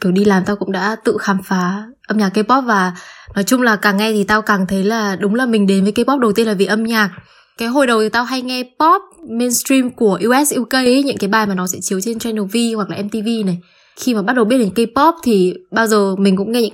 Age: 10-29